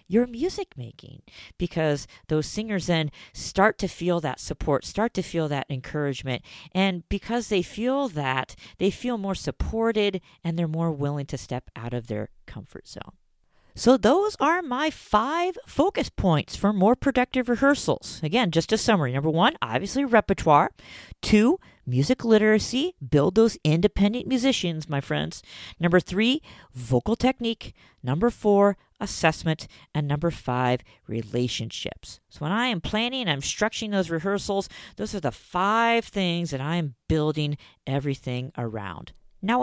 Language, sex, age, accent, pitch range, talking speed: English, female, 40-59, American, 145-220 Hz, 145 wpm